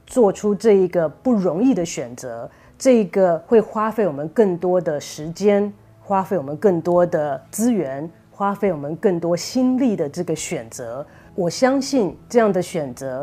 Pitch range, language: 155-205 Hz, Chinese